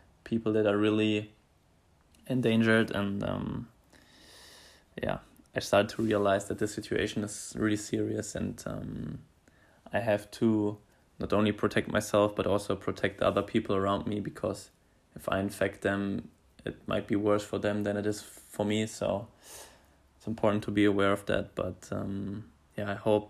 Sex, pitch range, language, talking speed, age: male, 95-110 Hz, German, 160 wpm, 20-39